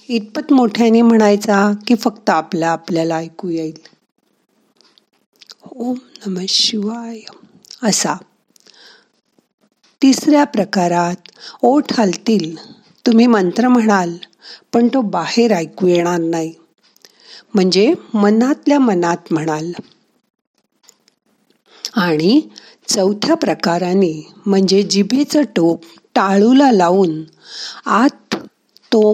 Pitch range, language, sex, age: 180-235 Hz, Marathi, female, 50-69